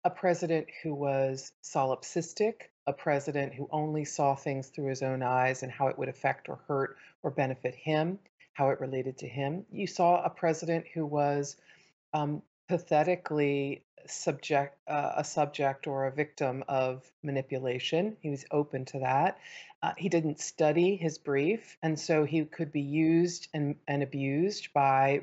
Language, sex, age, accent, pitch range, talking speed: English, female, 40-59, American, 140-180 Hz, 160 wpm